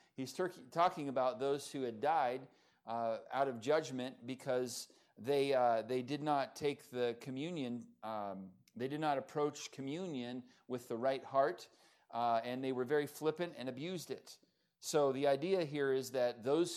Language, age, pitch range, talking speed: English, 40-59, 120-145 Hz, 170 wpm